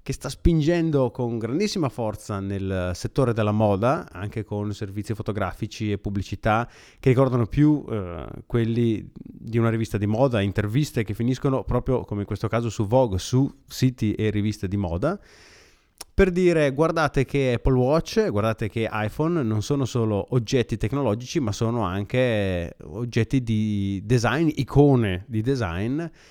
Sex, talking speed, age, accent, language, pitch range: male, 150 wpm, 30-49, native, Italian, 105-135 Hz